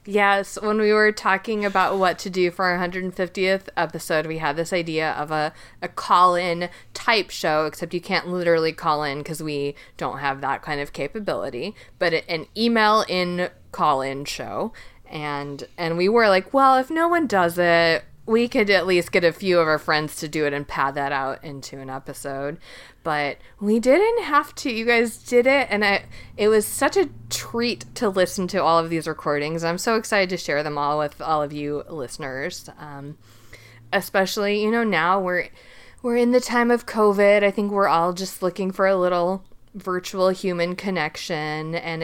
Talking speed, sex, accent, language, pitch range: 190 wpm, female, American, English, 160-215 Hz